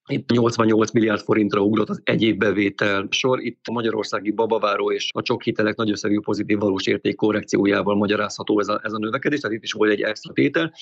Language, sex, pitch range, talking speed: Hungarian, male, 105-130 Hz, 185 wpm